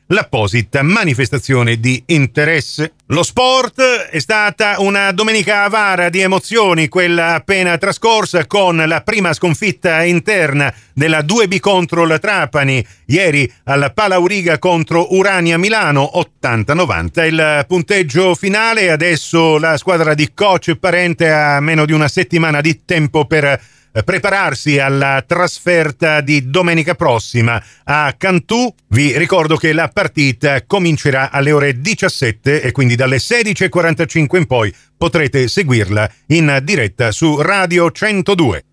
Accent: native